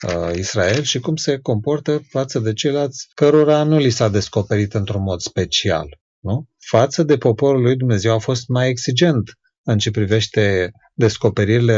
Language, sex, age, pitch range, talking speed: Romanian, male, 30-49, 95-120 Hz, 150 wpm